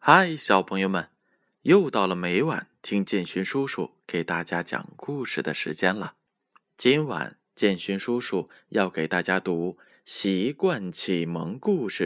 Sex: male